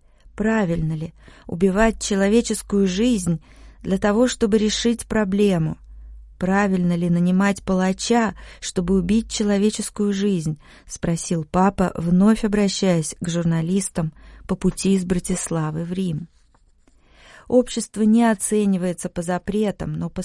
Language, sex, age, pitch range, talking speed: Russian, female, 20-39, 175-210 Hz, 110 wpm